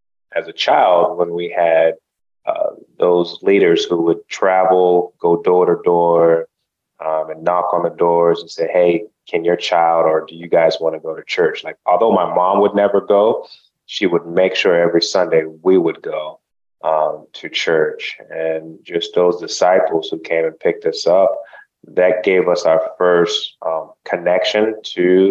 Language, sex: English, male